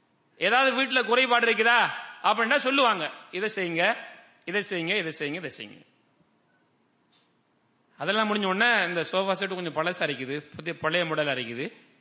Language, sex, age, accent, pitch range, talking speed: English, male, 30-49, Indian, 180-250 Hz, 90 wpm